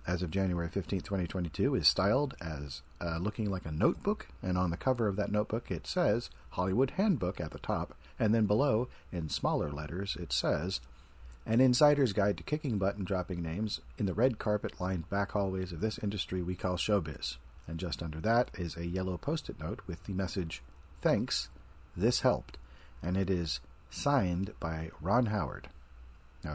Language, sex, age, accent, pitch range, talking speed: English, male, 40-59, American, 75-110 Hz, 180 wpm